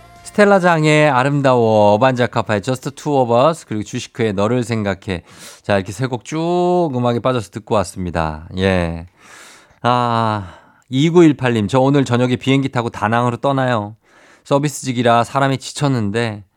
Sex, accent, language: male, native, Korean